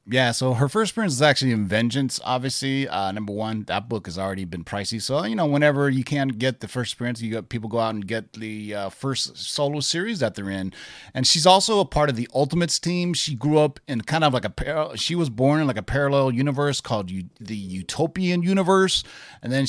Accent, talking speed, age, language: American, 230 wpm, 30-49, English